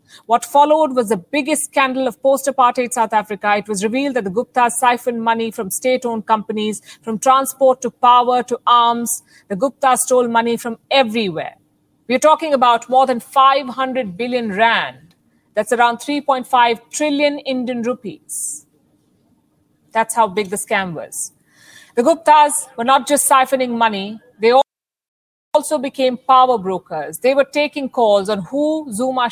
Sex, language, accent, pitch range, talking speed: female, English, Indian, 230-275 Hz, 145 wpm